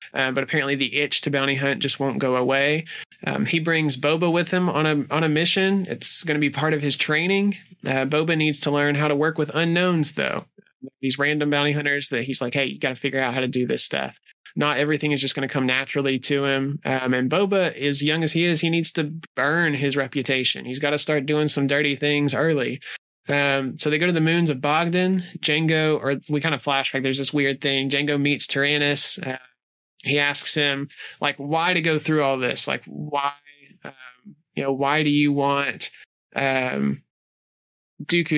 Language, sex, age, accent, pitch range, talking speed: English, male, 20-39, American, 135-155 Hz, 215 wpm